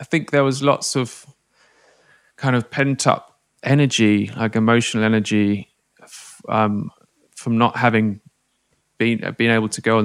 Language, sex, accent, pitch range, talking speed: English, male, British, 105-125 Hz, 145 wpm